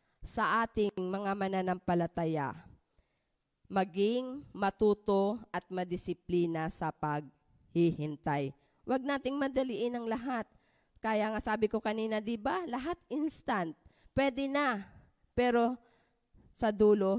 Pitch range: 180-230 Hz